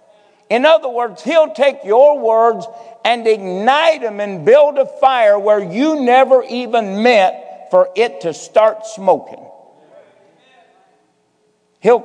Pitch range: 190-250 Hz